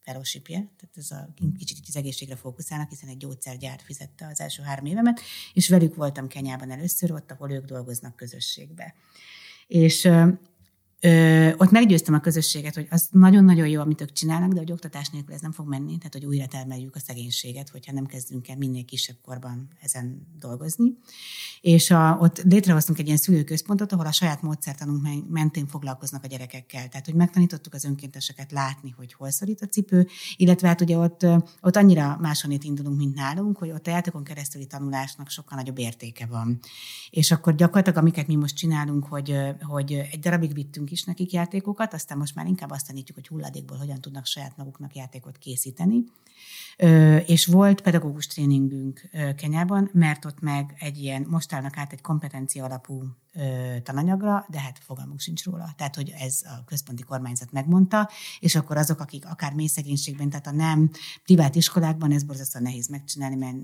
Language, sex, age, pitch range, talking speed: Hungarian, female, 60-79, 135-170 Hz, 175 wpm